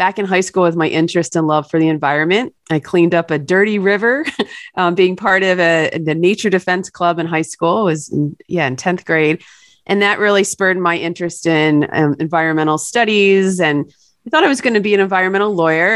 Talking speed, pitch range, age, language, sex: 220 wpm, 165-195 Hz, 30-49, English, female